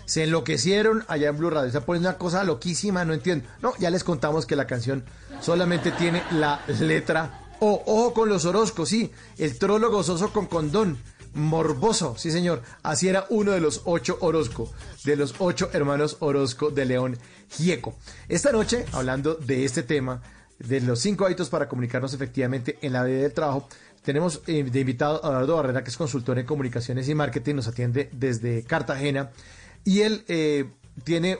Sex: male